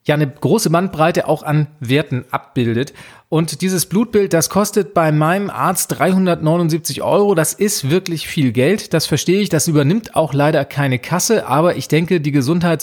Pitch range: 150-185 Hz